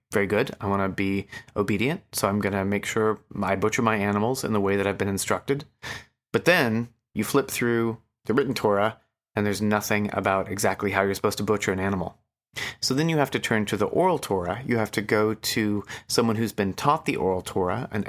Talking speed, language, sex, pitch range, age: 220 wpm, English, male, 100-125 Hz, 30-49